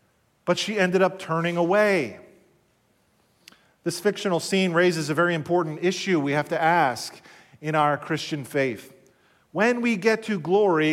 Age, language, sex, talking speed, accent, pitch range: 40-59, English, male, 150 wpm, American, 170-210 Hz